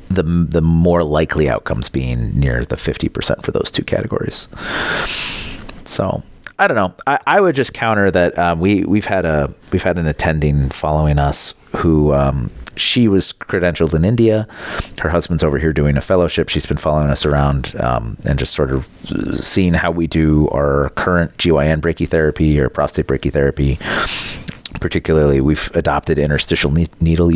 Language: English